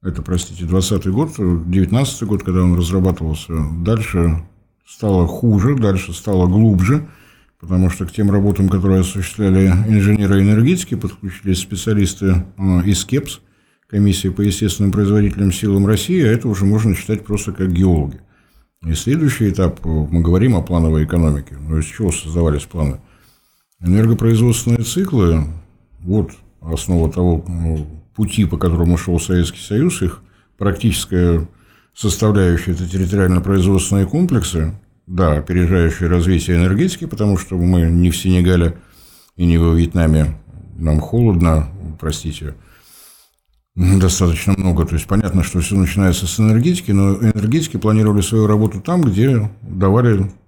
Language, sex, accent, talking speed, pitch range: Russian, male, native, 125 wpm, 85-105 Hz